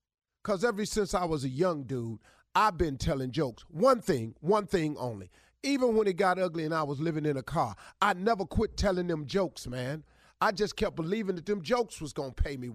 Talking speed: 220 wpm